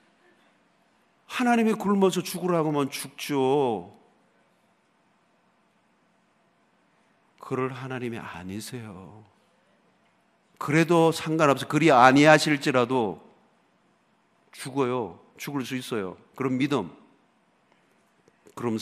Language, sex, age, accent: Korean, male, 50-69, native